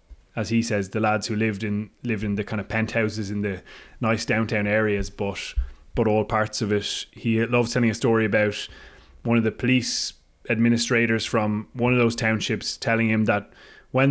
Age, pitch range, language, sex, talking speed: 20-39, 110-125 Hz, English, male, 190 wpm